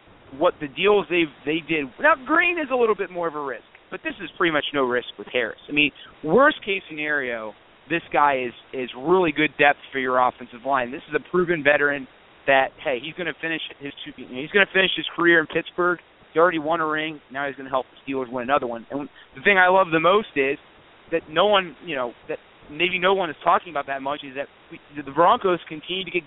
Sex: male